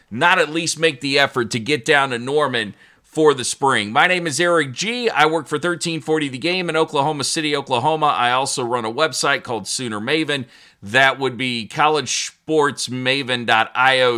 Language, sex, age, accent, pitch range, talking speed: English, male, 40-59, American, 115-155 Hz, 175 wpm